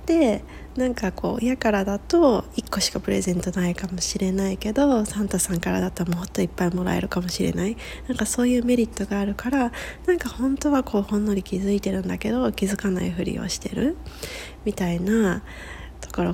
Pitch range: 195-245 Hz